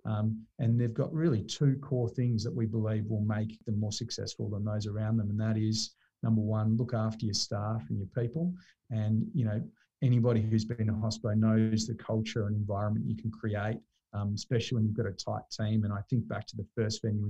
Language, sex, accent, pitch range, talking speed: English, male, Australian, 110-120 Hz, 225 wpm